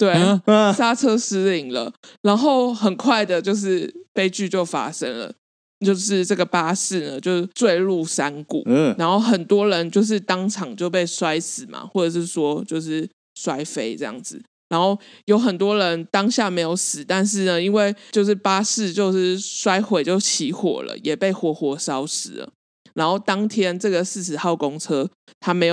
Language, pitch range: Chinese, 170-210 Hz